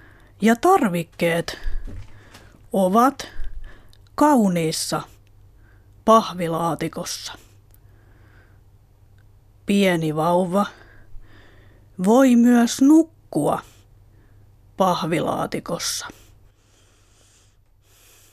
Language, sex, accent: Finnish, female, native